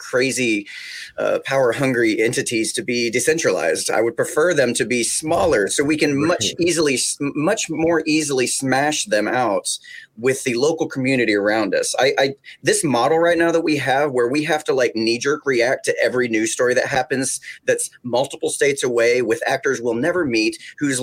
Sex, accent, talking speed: male, American, 190 wpm